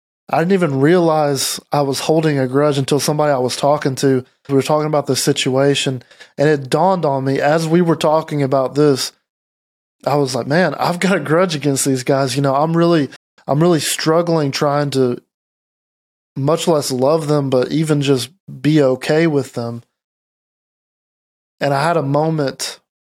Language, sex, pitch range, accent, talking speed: English, male, 135-155 Hz, American, 175 wpm